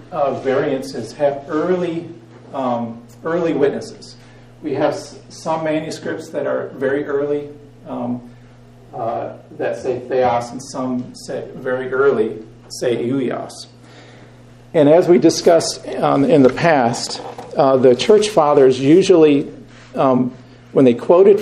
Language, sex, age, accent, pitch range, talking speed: English, male, 50-69, American, 125-155 Hz, 125 wpm